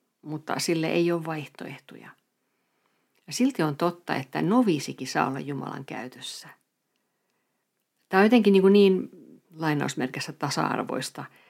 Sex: female